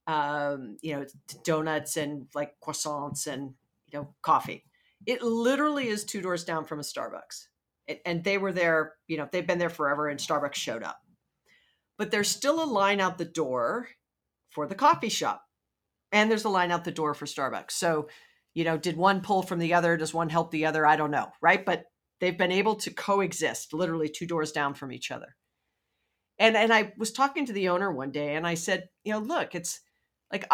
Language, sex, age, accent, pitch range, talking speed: English, female, 40-59, American, 155-210 Hz, 205 wpm